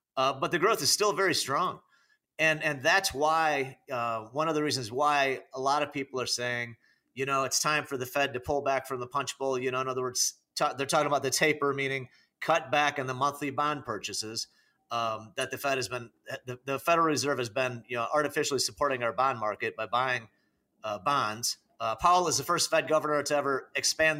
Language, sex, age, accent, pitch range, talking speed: English, male, 40-59, American, 130-155 Hz, 225 wpm